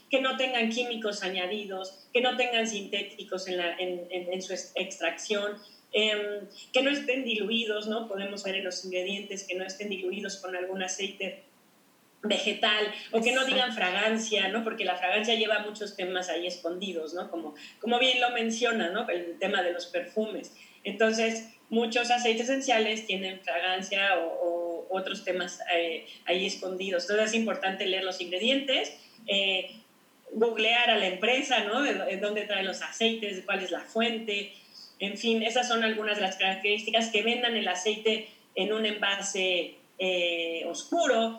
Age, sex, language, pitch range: 30-49, female, Spanish, 185-230 Hz